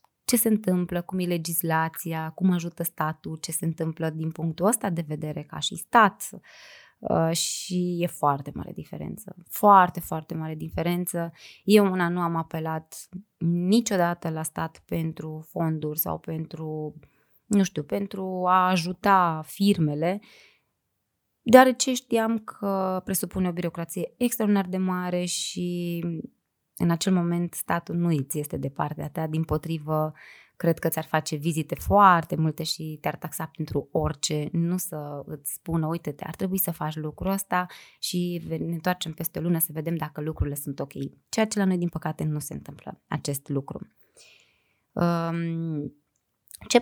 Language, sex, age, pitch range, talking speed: Romanian, female, 20-39, 160-190 Hz, 150 wpm